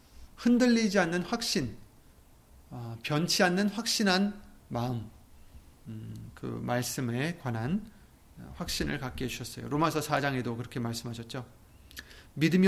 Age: 30-49